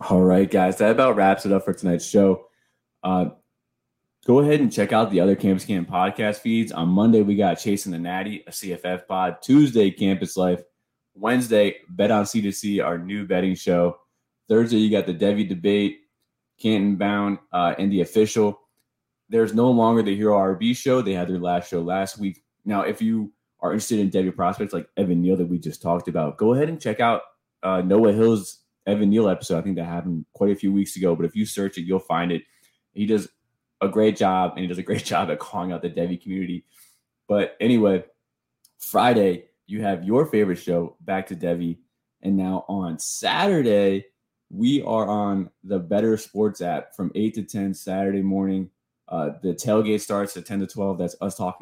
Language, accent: English, American